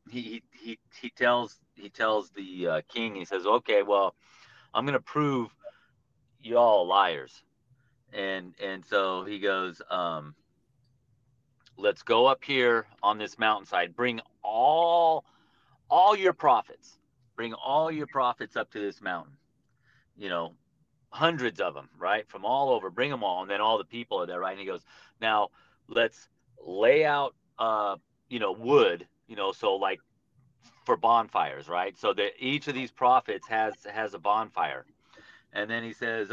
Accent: American